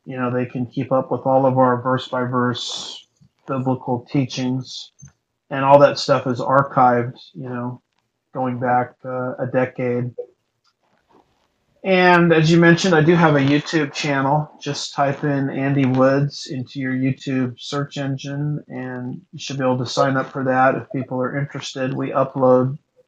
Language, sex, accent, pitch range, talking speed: English, male, American, 130-145 Hz, 165 wpm